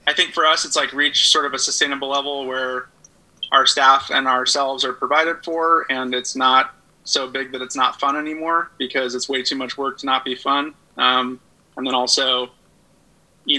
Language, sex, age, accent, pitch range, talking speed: English, male, 20-39, American, 125-135 Hz, 200 wpm